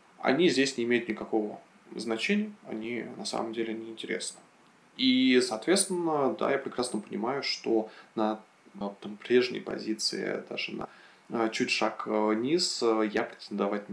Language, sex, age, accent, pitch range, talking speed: Russian, male, 20-39, native, 110-125 Hz, 140 wpm